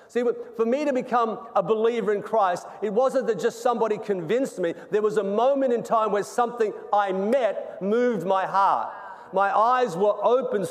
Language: English